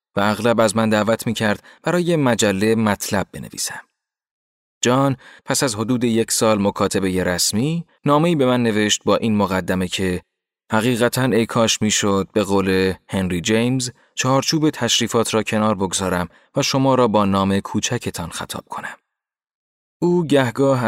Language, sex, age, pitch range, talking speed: Persian, male, 30-49, 95-125 Hz, 140 wpm